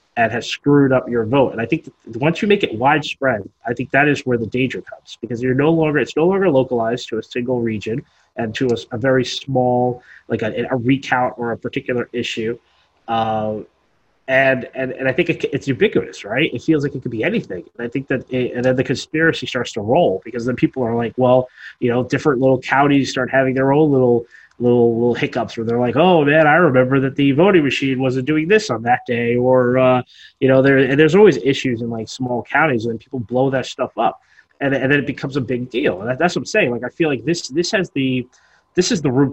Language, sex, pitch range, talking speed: English, male, 120-140 Hz, 245 wpm